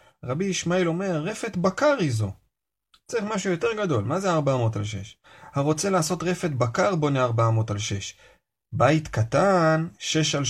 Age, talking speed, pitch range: 30-49, 160 wpm, 110-150 Hz